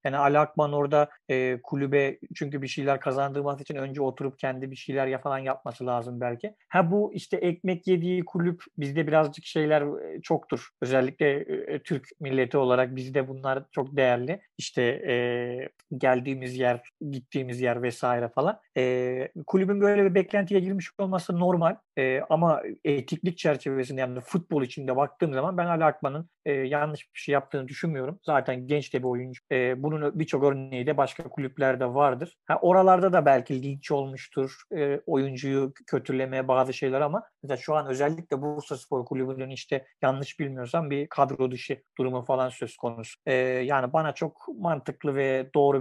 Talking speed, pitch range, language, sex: 160 wpm, 130-155 Hz, Turkish, male